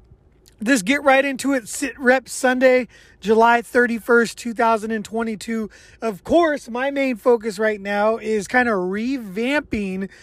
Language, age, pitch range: English, 20-39, 200-235 Hz